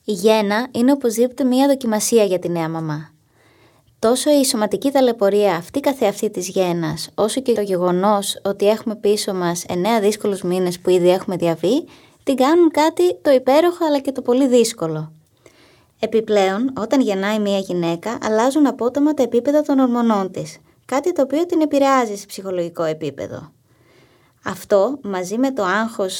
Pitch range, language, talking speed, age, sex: 180-265 Hz, Greek, 155 wpm, 20-39, female